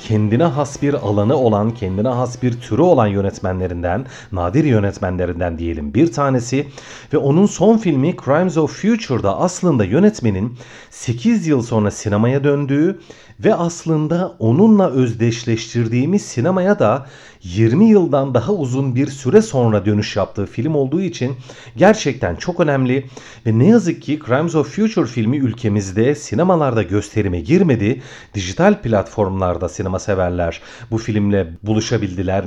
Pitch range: 110-160 Hz